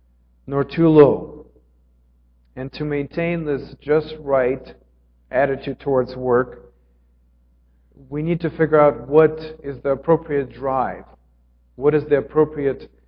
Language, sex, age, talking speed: English, male, 40-59, 120 wpm